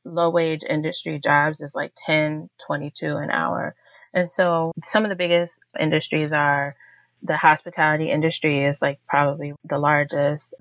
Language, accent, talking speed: English, American, 140 wpm